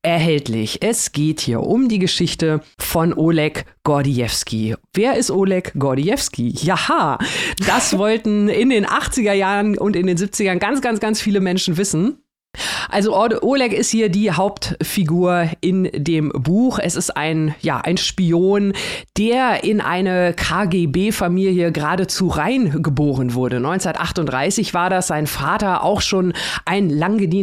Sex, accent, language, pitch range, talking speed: female, German, German, 165-205 Hz, 140 wpm